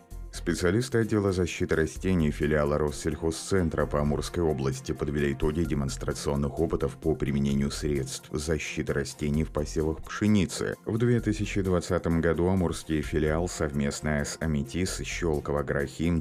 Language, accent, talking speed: Russian, native, 110 wpm